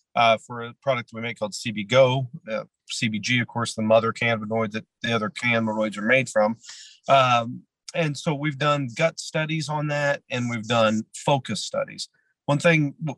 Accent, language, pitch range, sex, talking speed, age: American, English, 115-145 Hz, male, 180 wpm, 40-59